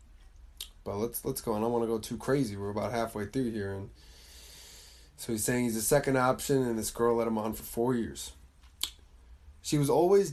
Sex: male